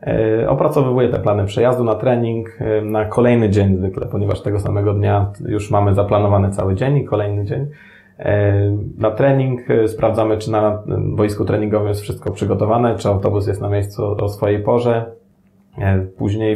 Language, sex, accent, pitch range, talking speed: Polish, male, native, 105-125 Hz, 150 wpm